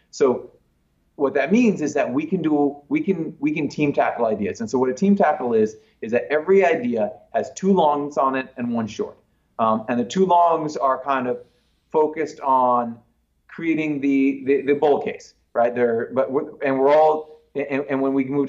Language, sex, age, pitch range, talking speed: English, male, 30-49, 130-175 Hz, 205 wpm